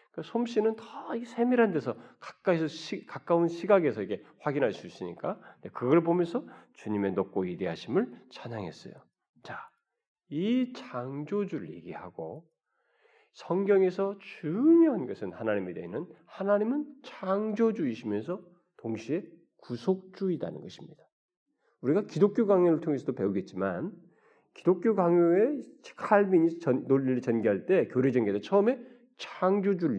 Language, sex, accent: Korean, male, native